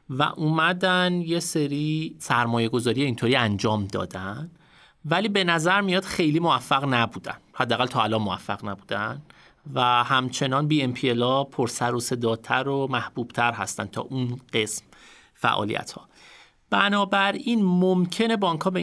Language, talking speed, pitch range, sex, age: Persian, 135 wpm, 120-160 Hz, male, 30-49